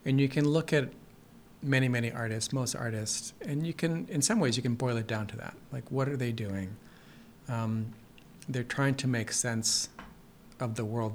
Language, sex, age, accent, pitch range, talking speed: English, male, 40-59, American, 115-140 Hz, 200 wpm